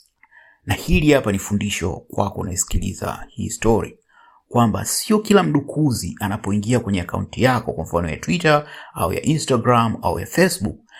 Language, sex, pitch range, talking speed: English, male, 100-135 Hz, 135 wpm